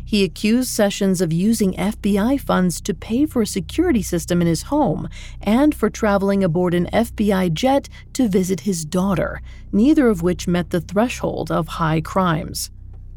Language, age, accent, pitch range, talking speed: English, 40-59, American, 175-235 Hz, 165 wpm